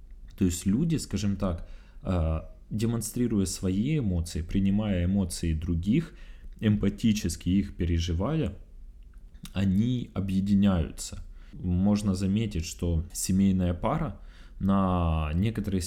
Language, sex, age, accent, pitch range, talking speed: Russian, male, 20-39, native, 90-110 Hz, 85 wpm